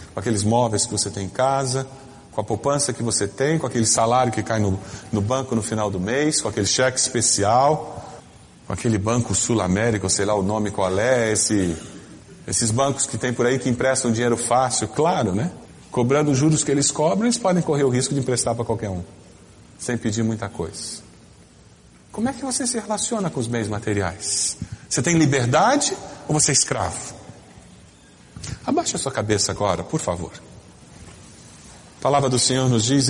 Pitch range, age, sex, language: 110-155 Hz, 40-59, male, Portuguese